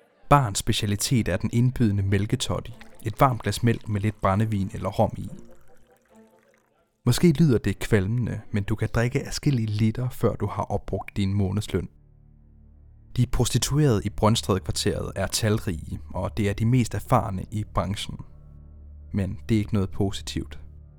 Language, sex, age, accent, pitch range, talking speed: Danish, male, 30-49, native, 95-115 Hz, 150 wpm